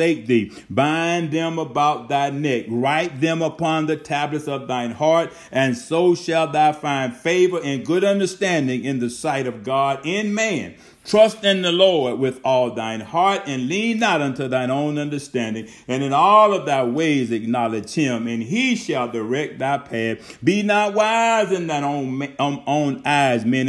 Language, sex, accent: English, male, American